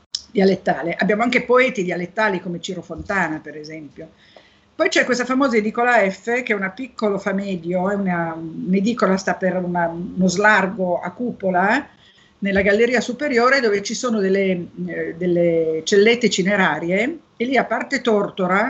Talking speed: 150 wpm